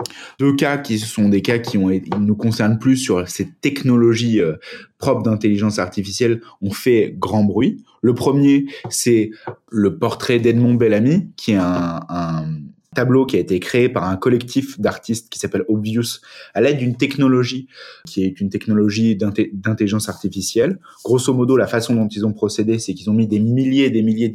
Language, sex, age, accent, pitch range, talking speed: French, male, 20-39, French, 95-120 Hz, 175 wpm